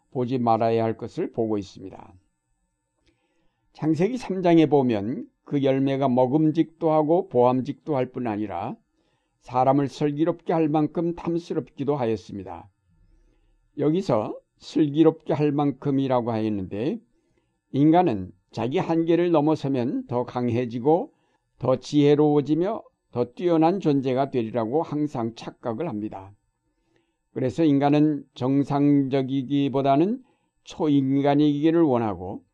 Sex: male